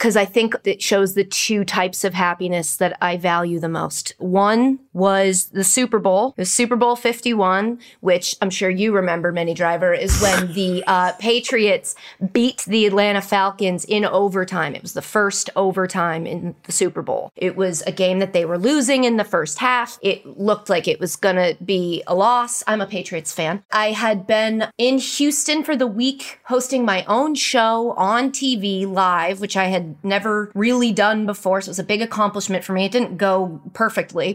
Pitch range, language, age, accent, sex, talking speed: 185-245 Hz, English, 30-49, American, female, 195 wpm